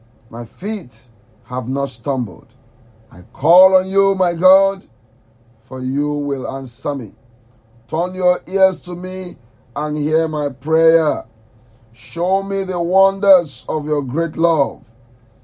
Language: English